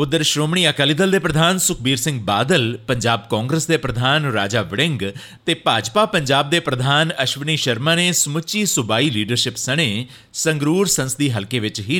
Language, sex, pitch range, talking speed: Punjabi, male, 115-165 Hz, 160 wpm